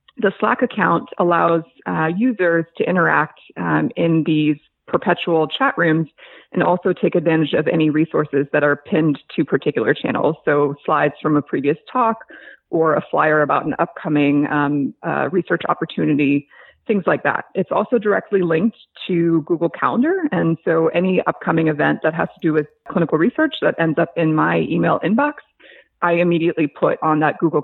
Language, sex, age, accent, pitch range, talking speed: English, female, 30-49, American, 150-185 Hz, 170 wpm